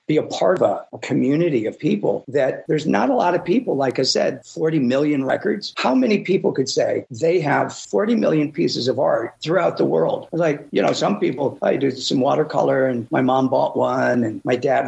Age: 50-69